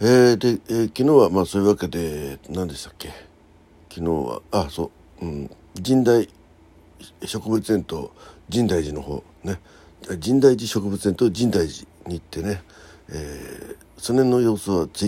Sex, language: male, Japanese